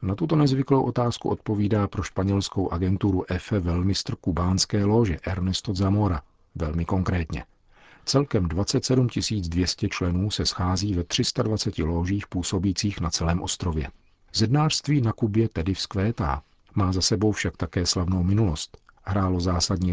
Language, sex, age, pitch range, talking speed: Czech, male, 50-69, 85-105 Hz, 130 wpm